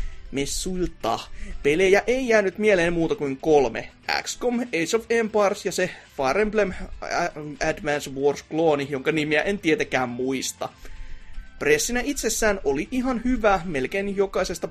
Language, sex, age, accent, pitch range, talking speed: Finnish, male, 30-49, native, 140-225 Hz, 125 wpm